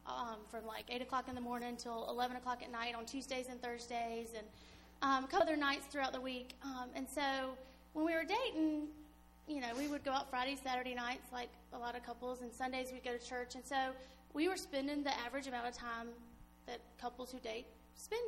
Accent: American